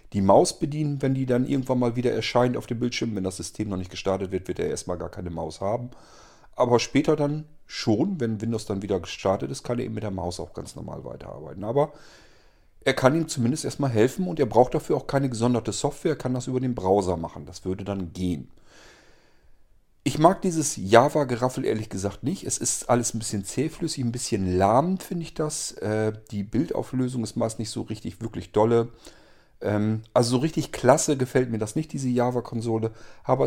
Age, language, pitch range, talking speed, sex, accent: 40-59, German, 100-140 Hz, 200 wpm, male, German